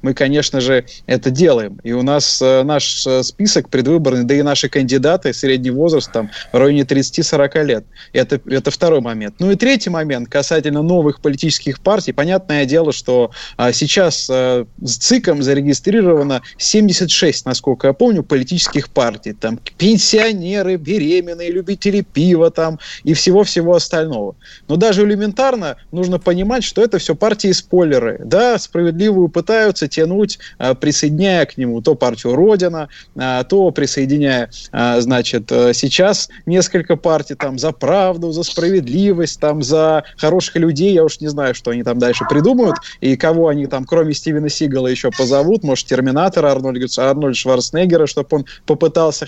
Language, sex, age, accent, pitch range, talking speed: Russian, male, 20-39, native, 135-180 Hz, 145 wpm